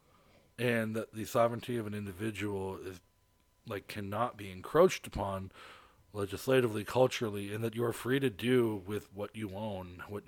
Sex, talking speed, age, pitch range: male, 160 wpm, 40-59, 95-120 Hz